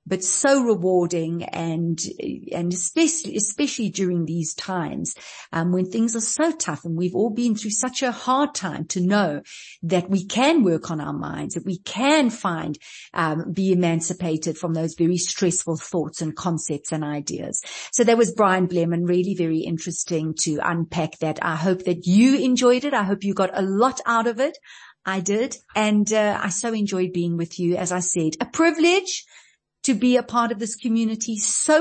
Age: 50-69